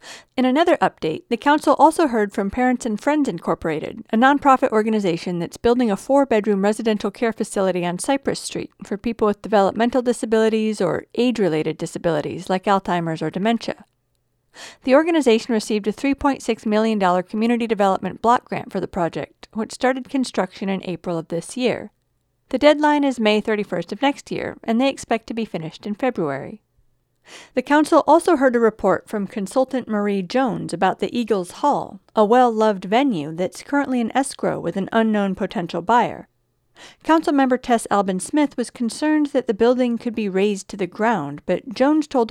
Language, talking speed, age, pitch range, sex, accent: English, 170 wpm, 50-69, 195-255 Hz, female, American